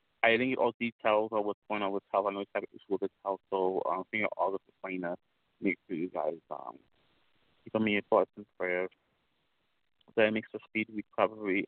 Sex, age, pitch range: male, 30-49, 95-115 Hz